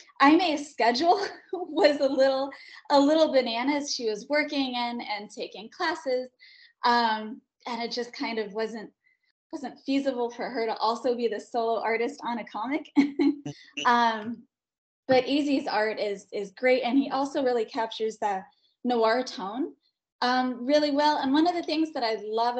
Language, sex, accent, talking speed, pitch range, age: English, female, American, 160 wpm, 225-295 Hz, 10-29